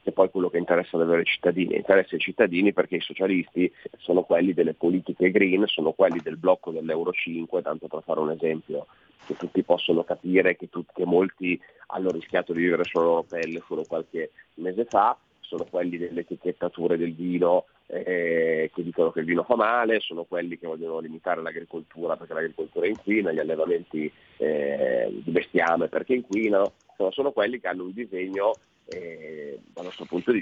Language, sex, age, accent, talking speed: Italian, male, 30-49, native, 180 wpm